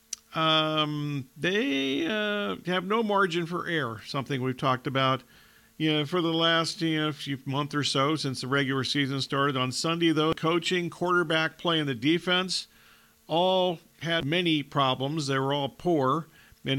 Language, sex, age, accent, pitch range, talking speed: English, male, 50-69, American, 140-170 Hz, 160 wpm